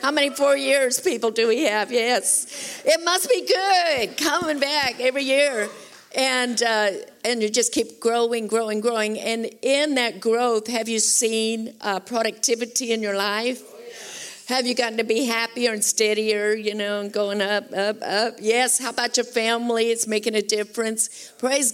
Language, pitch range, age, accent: English, 210-260 Hz, 50-69, American